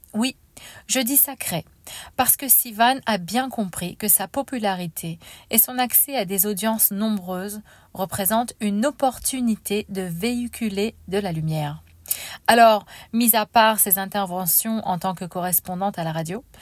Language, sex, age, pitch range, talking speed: French, female, 40-59, 180-230 Hz, 150 wpm